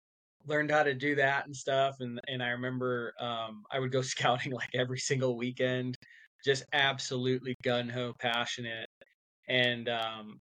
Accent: American